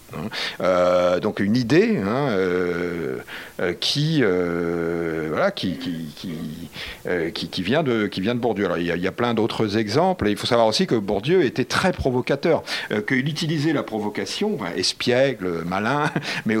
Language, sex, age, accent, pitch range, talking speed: French, male, 50-69, French, 90-135 Hz, 125 wpm